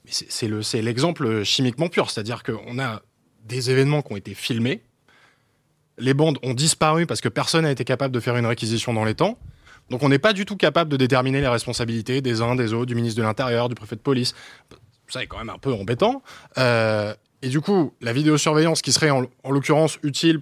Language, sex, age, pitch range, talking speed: French, male, 20-39, 110-145 Hz, 220 wpm